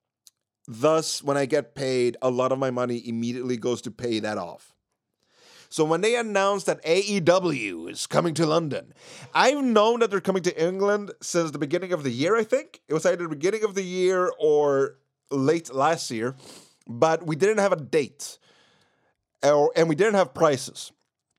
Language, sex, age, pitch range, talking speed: English, male, 30-49, 130-180 Hz, 180 wpm